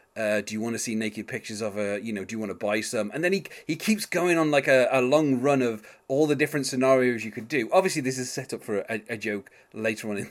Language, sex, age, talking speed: English, male, 30-49, 290 wpm